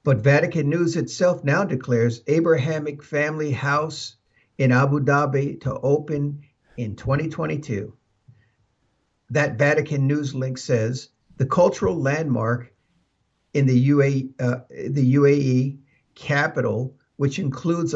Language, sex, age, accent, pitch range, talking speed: English, male, 60-79, American, 125-150 Hz, 105 wpm